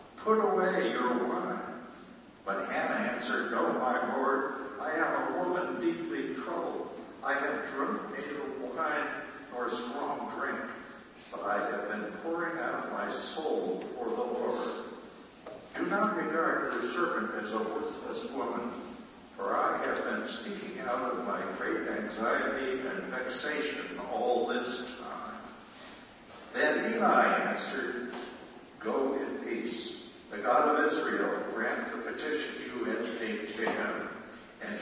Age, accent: 60-79, American